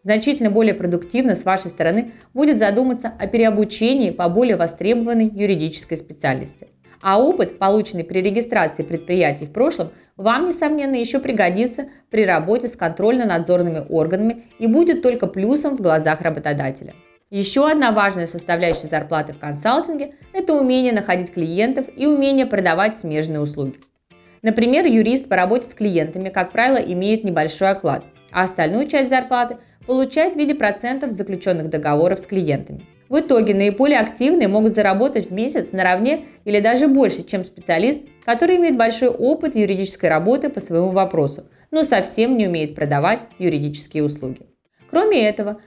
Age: 20-39